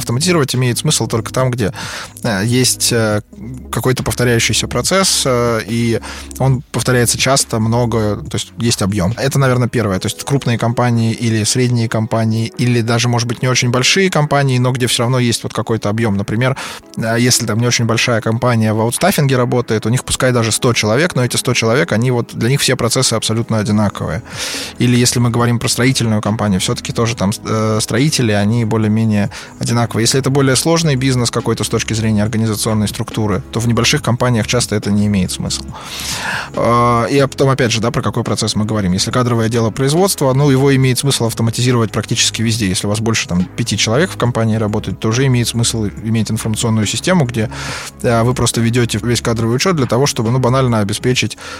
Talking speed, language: 185 wpm, Russian